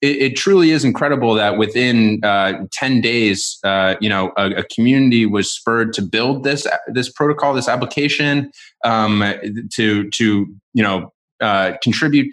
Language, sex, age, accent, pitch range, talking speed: English, male, 20-39, American, 100-120 Hz, 150 wpm